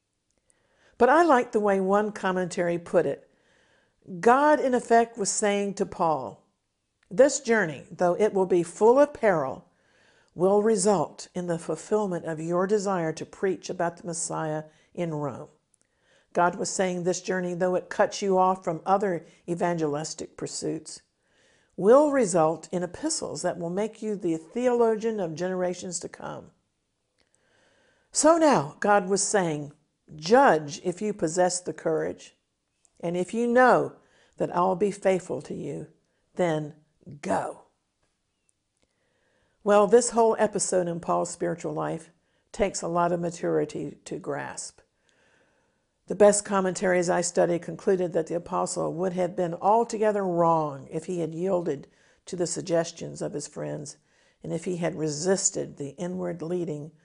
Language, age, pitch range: English, 50-69, 165-205 Hz